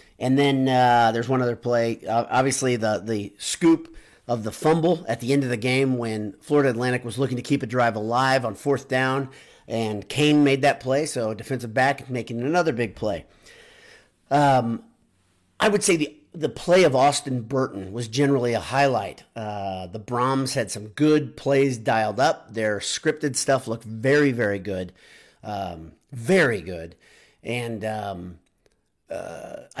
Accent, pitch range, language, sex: American, 110-140 Hz, English, male